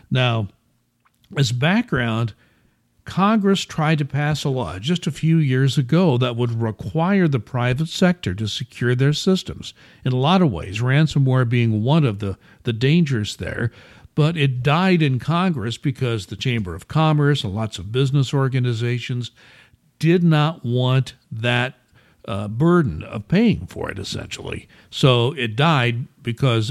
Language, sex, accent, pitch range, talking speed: English, male, American, 115-155 Hz, 150 wpm